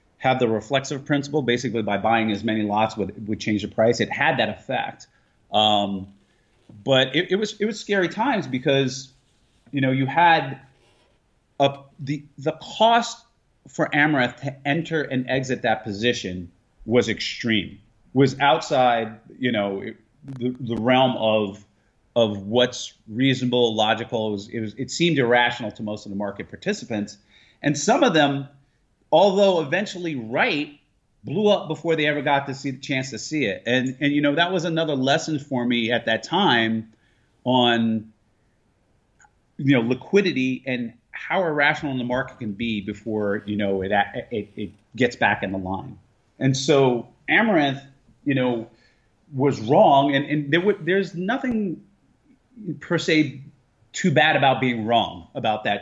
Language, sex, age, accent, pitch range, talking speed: English, male, 30-49, American, 110-145 Hz, 160 wpm